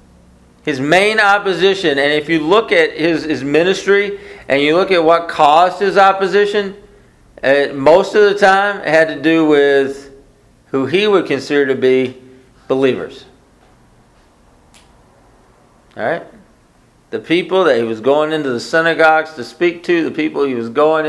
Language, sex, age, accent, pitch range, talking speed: English, male, 50-69, American, 145-205 Hz, 155 wpm